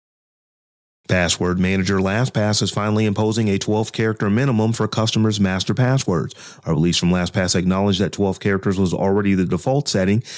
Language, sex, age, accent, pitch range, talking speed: English, male, 30-49, American, 95-115 Hz, 145 wpm